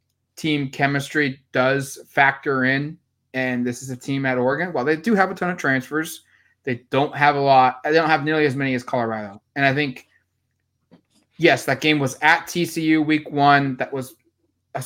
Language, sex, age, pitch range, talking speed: English, male, 20-39, 125-145 Hz, 190 wpm